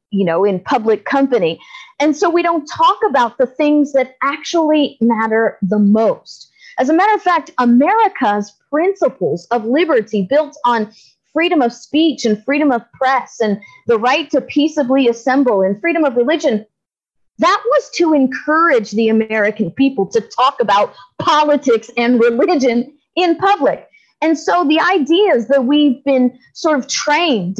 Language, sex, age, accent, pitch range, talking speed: English, female, 40-59, American, 225-300 Hz, 155 wpm